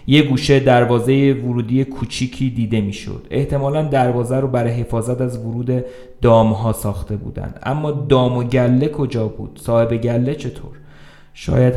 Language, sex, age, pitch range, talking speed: Persian, male, 30-49, 110-135 Hz, 145 wpm